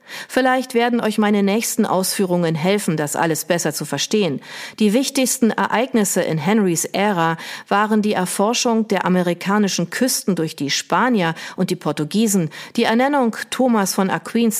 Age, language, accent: 40-59, German, German